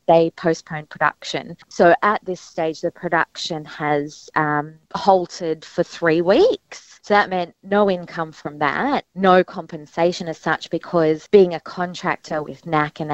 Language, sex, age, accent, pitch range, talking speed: English, female, 20-39, Australian, 160-190 Hz, 150 wpm